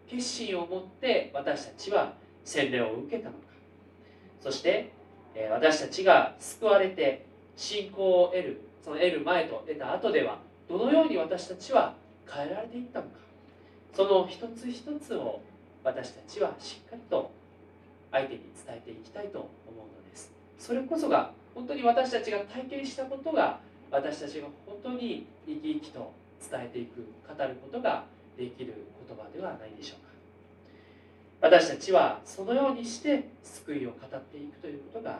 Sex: male